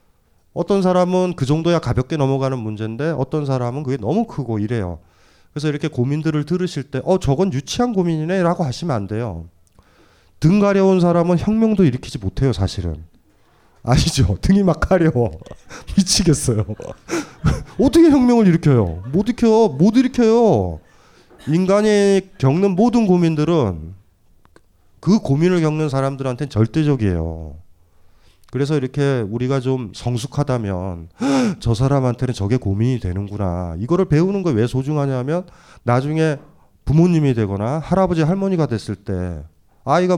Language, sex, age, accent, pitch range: Korean, male, 30-49, native, 105-175 Hz